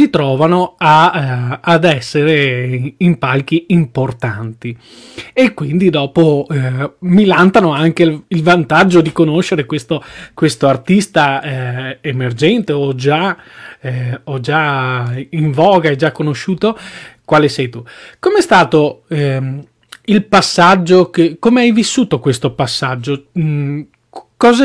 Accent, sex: native, male